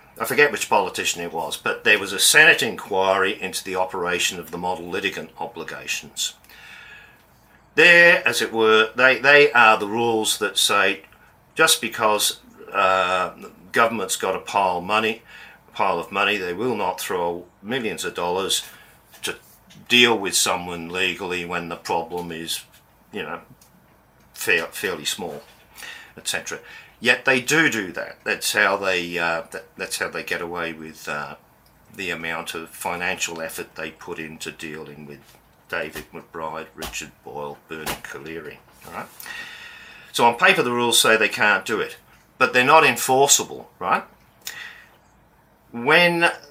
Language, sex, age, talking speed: English, male, 50-69, 150 wpm